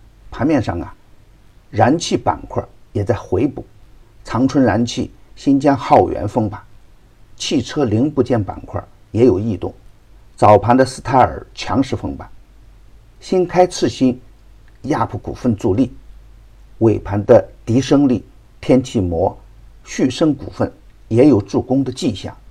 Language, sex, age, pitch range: Chinese, male, 50-69, 100-120 Hz